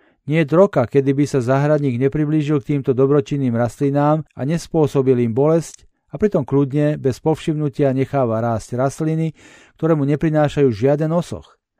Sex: male